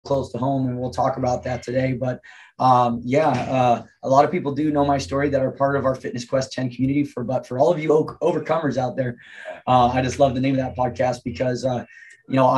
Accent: American